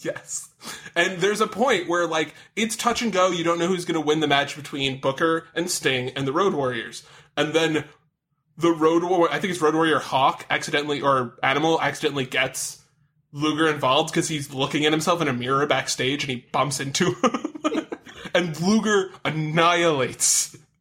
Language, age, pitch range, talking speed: English, 20-39, 145-175 Hz, 180 wpm